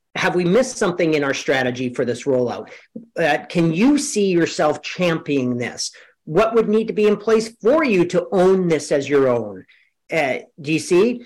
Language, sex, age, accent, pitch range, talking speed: English, male, 40-59, American, 160-215 Hz, 190 wpm